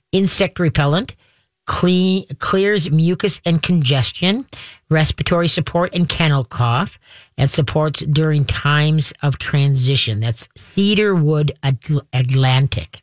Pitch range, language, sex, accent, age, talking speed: 135-165 Hz, English, female, American, 50-69, 90 wpm